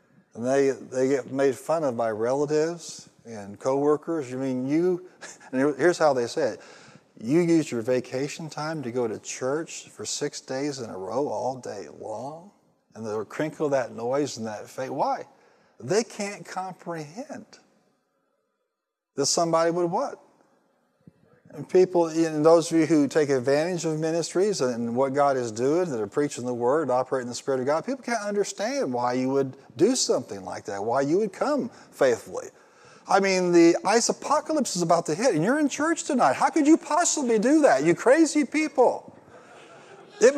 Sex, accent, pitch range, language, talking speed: male, American, 140-235 Hz, English, 175 wpm